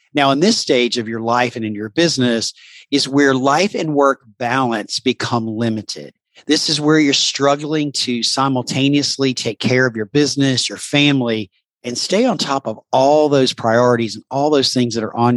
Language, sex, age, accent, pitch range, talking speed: English, male, 50-69, American, 120-150 Hz, 185 wpm